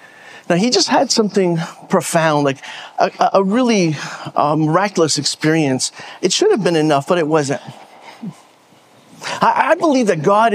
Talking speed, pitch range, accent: 150 wpm, 170-240 Hz, American